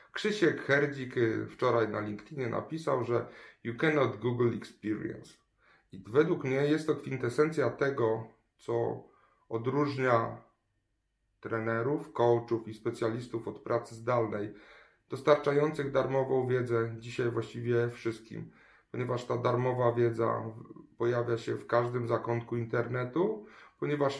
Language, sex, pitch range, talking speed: Polish, male, 115-135 Hz, 110 wpm